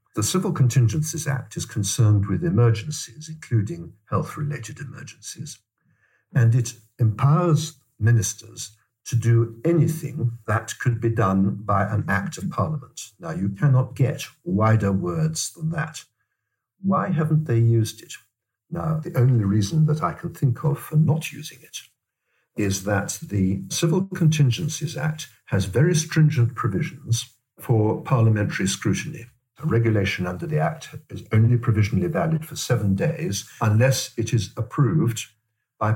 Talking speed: 140 wpm